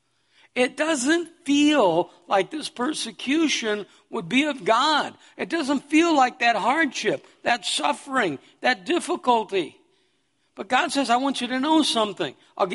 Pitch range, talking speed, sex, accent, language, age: 185-295 Hz, 140 wpm, male, American, English, 60-79